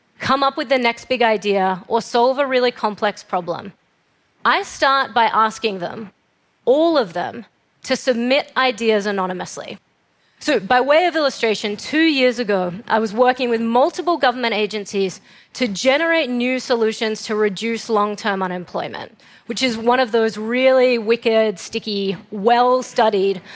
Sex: female